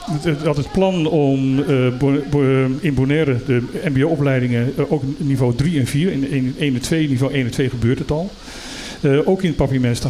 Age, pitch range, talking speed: 50-69, 125-150 Hz, 185 wpm